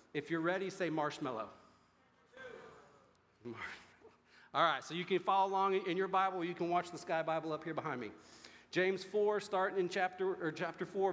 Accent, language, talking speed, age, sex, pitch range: American, English, 175 wpm, 40-59, male, 160-195 Hz